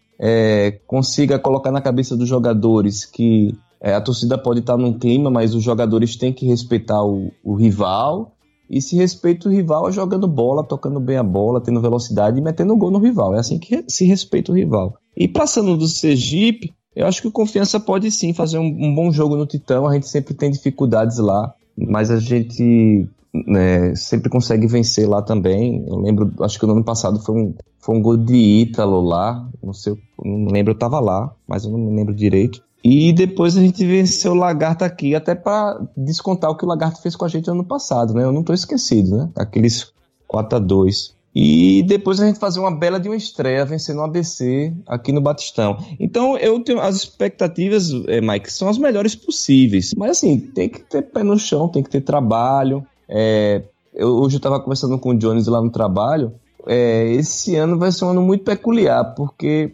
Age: 20-39